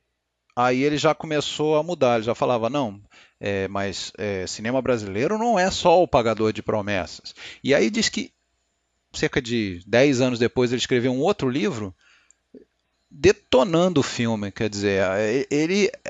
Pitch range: 105-140 Hz